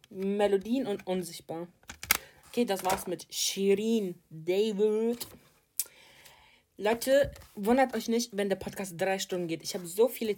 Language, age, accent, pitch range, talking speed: German, 20-39, German, 180-215 Hz, 135 wpm